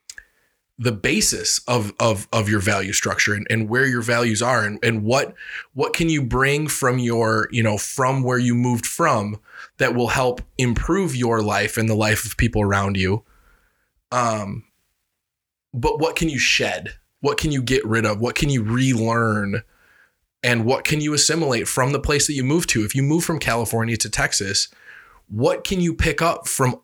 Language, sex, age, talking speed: English, male, 20-39, 190 wpm